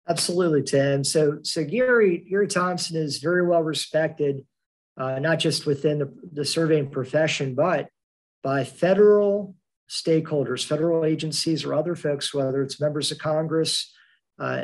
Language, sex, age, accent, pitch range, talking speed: English, male, 50-69, American, 140-170 Hz, 140 wpm